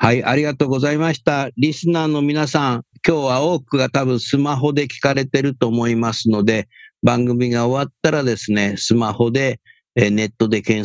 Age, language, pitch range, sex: 50-69, Japanese, 100-145 Hz, male